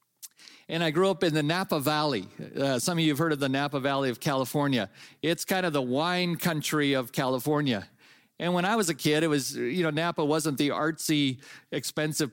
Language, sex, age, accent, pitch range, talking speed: English, male, 50-69, American, 145-195 Hz, 210 wpm